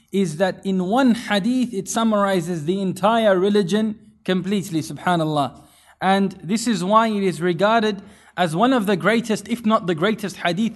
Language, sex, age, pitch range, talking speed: English, male, 20-39, 175-215 Hz, 160 wpm